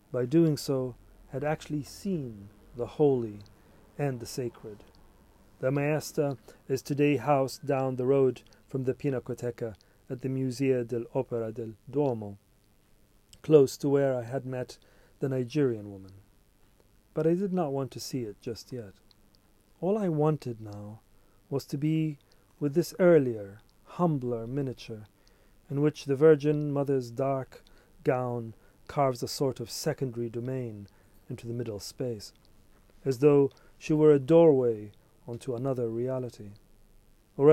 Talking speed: 140 wpm